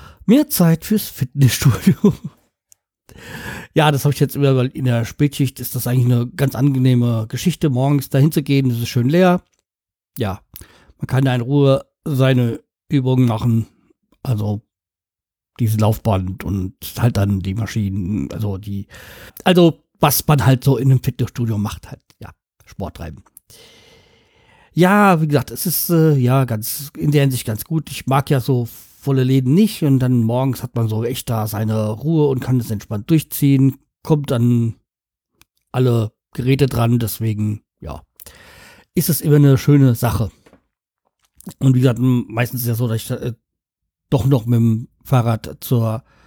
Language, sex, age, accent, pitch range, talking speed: German, male, 50-69, German, 110-140 Hz, 160 wpm